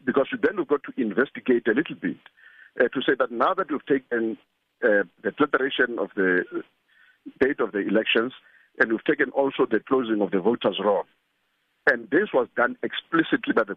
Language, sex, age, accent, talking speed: English, male, 50-69, South African, 190 wpm